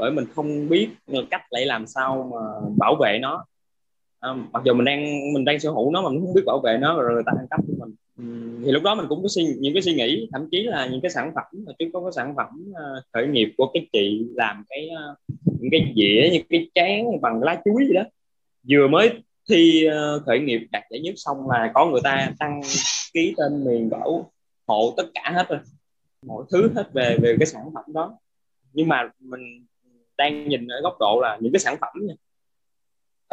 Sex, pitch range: male, 120-165 Hz